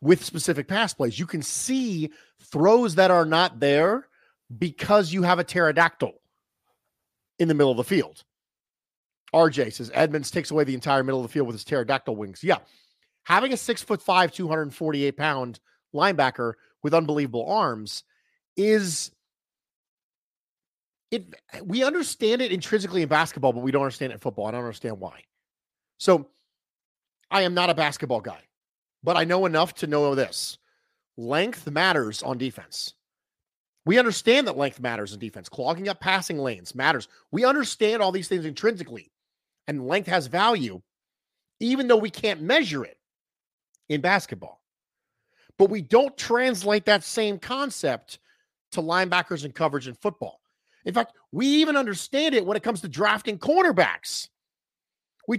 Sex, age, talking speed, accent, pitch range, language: male, 40-59, 155 wpm, American, 140-215 Hz, English